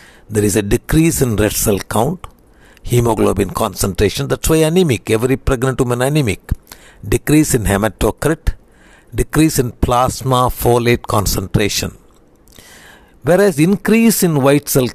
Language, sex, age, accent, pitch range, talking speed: Tamil, male, 60-79, native, 115-150 Hz, 120 wpm